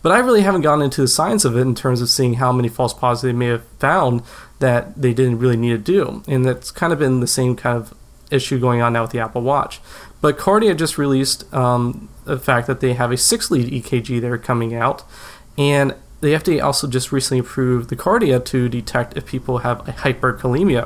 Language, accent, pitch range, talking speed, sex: English, American, 120-135 Hz, 225 wpm, male